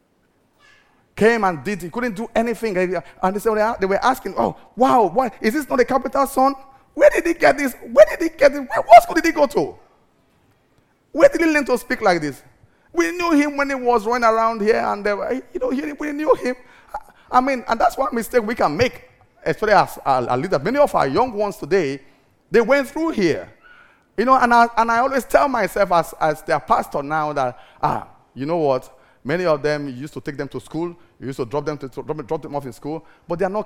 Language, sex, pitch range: English, male, 175-270 Hz